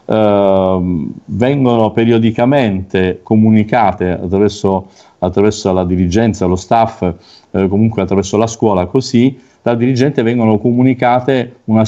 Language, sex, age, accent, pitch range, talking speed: Italian, male, 50-69, native, 100-125 Hz, 100 wpm